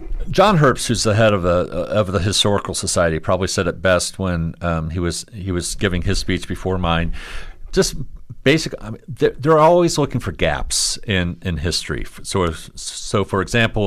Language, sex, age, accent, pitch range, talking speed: English, male, 50-69, American, 80-100 Hz, 185 wpm